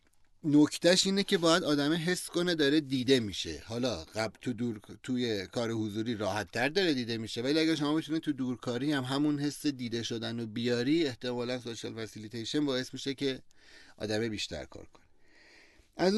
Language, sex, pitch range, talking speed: Persian, male, 115-150 Hz, 165 wpm